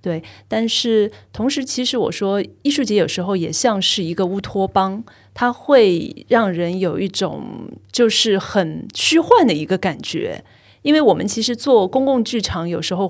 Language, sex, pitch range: Chinese, female, 180-215 Hz